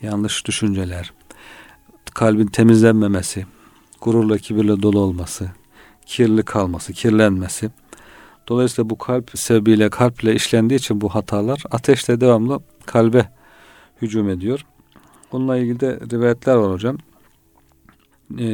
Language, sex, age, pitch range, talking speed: Turkish, male, 40-59, 105-120 Hz, 105 wpm